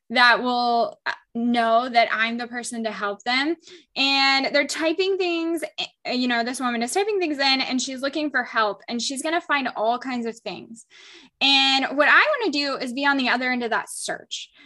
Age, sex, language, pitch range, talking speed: 10-29, female, English, 230-295 Hz, 210 wpm